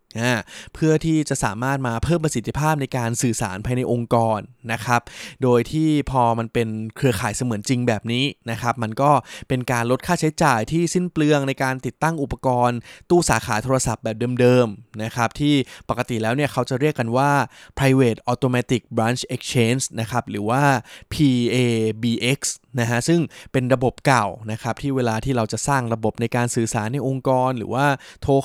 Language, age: Thai, 20-39